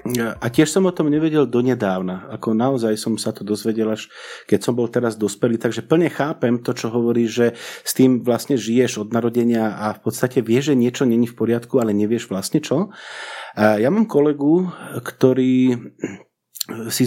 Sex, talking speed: male, 180 wpm